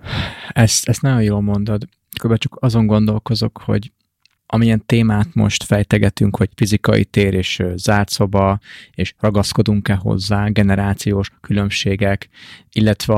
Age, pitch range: 30-49, 100-110 Hz